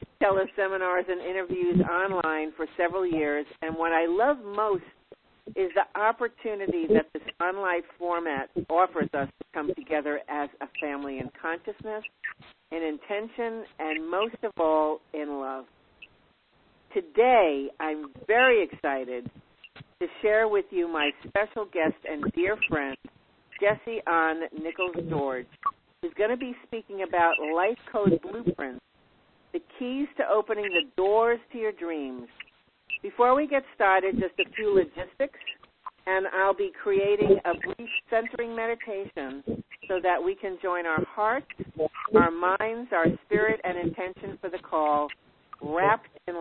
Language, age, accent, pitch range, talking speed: English, 50-69, American, 165-220 Hz, 135 wpm